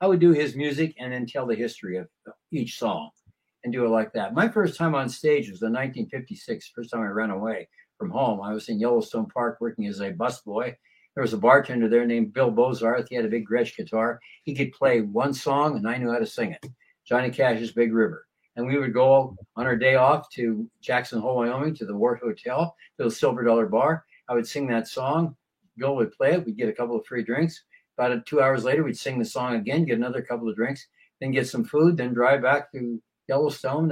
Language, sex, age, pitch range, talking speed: English, male, 60-79, 115-155 Hz, 235 wpm